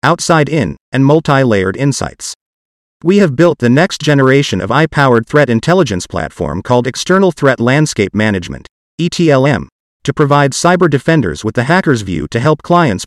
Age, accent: 40-59, American